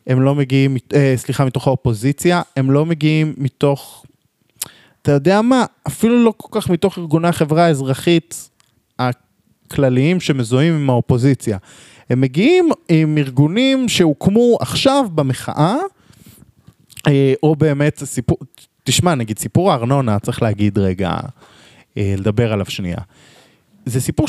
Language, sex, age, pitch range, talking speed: Hebrew, male, 20-39, 115-150 Hz, 115 wpm